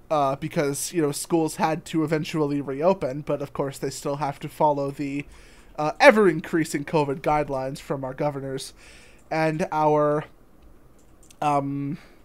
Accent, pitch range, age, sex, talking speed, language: American, 150-190 Hz, 20-39, male, 135 wpm, English